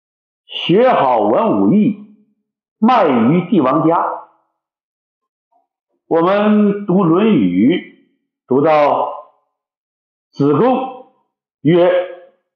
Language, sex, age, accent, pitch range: Chinese, male, 50-69, native, 150-255 Hz